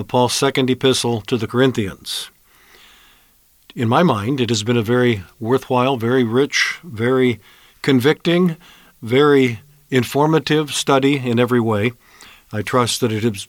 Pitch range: 120-150 Hz